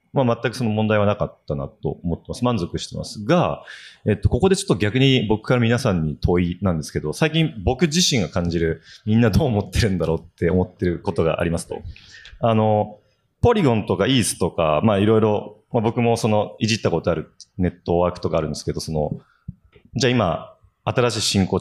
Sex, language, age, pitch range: male, Japanese, 30-49, 95-130 Hz